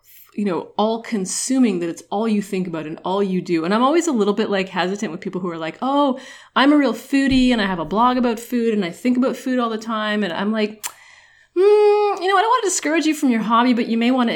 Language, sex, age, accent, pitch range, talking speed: English, female, 30-49, American, 175-235 Hz, 280 wpm